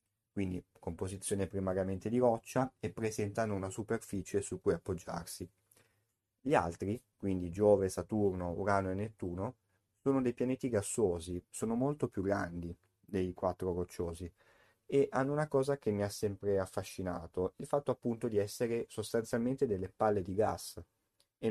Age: 30-49